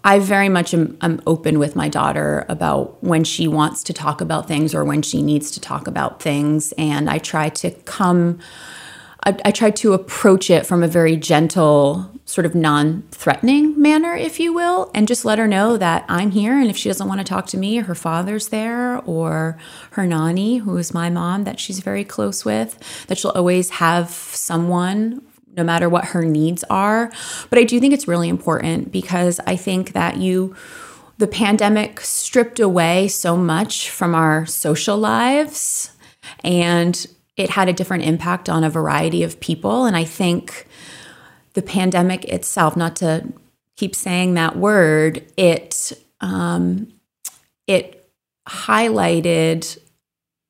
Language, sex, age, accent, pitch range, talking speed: English, female, 30-49, American, 160-205 Hz, 165 wpm